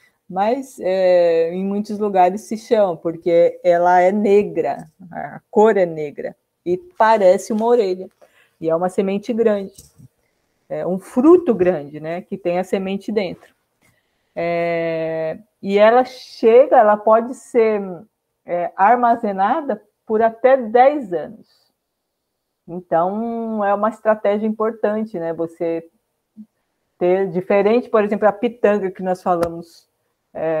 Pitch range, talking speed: 180-225 Hz, 125 wpm